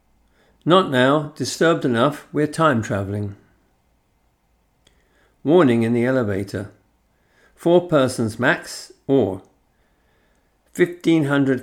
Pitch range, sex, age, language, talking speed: 105-130 Hz, male, 50-69, English, 75 wpm